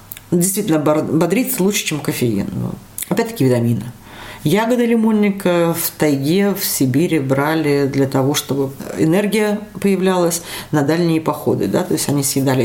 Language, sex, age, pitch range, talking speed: Russian, female, 40-59, 130-180 Hz, 130 wpm